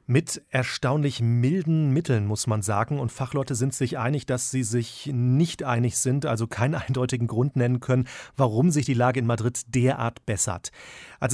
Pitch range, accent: 120-140 Hz, German